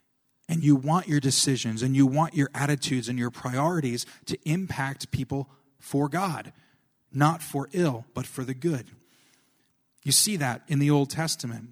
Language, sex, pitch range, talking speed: English, male, 125-160 Hz, 165 wpm